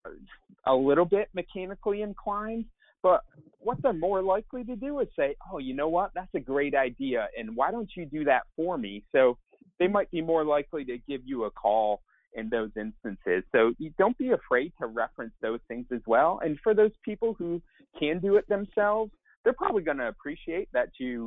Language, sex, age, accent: English, male, 30-49, American